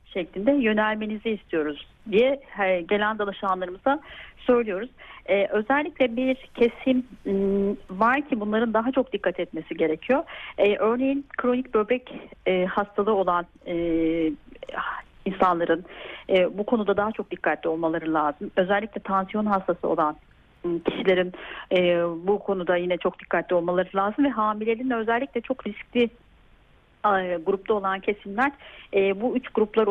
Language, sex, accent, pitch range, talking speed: Turkish, female, native, 195-245 Hz, 110 wpm